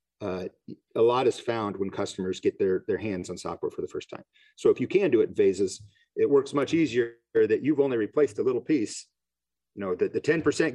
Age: 40-59